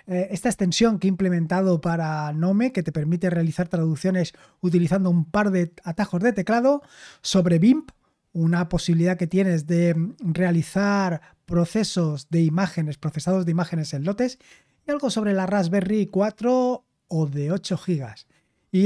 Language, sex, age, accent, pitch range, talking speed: Spanish, male, 20-39, Spanish, 170-210 Hz, 145 wpm